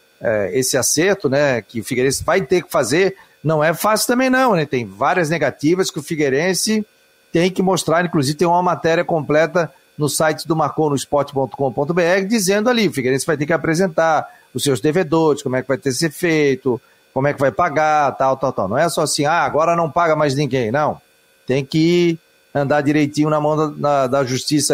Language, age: Portuguese, 40-59